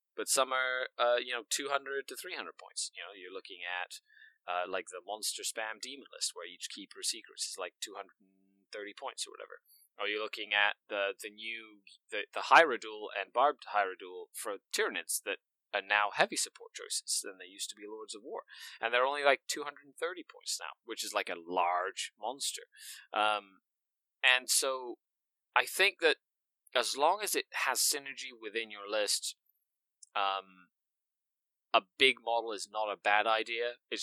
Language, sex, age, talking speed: English, male, 30-49, 175 wpm